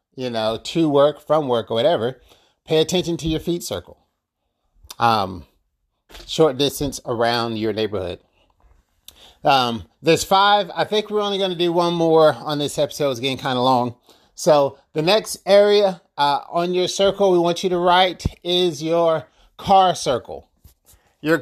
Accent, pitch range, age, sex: American, 135-195 Hz, 30-49, male